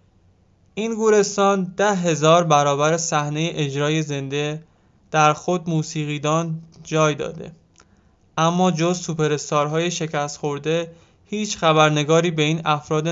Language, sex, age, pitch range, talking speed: Persian, male, 20-39, 150-175 Hz, 105 wpm